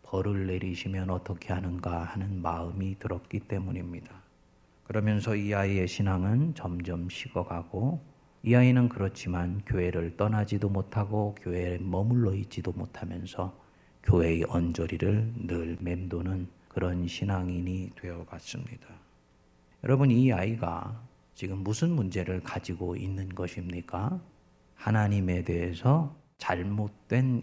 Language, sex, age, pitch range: Korean, male, 40-59, 90-115 Hz